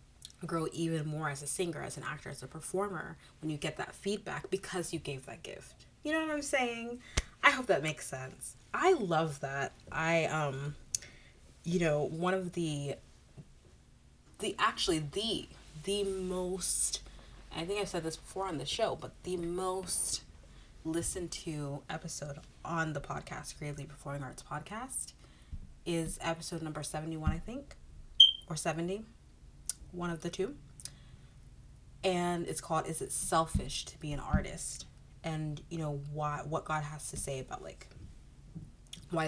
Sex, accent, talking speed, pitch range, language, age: female, American, 155 wpm, 145-180 Hz, English, 30-49